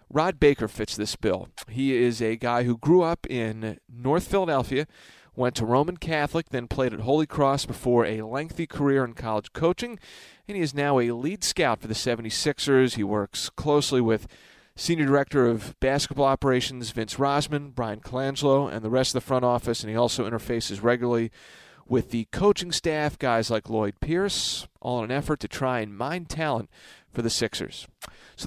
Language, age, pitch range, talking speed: English, 40-59, 115-150 Hz, 185 wpm